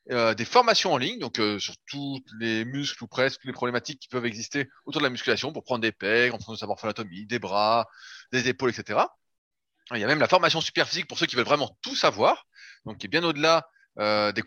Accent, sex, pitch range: French, male, 115-175 Hz